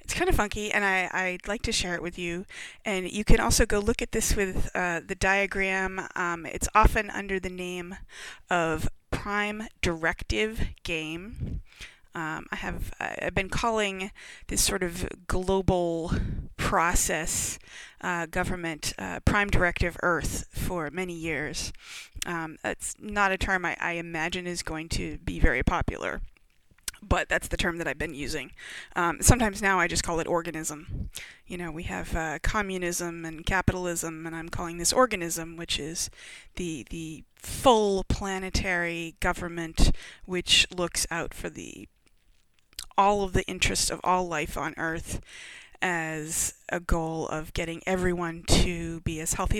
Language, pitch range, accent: English, 165-190 Hz, American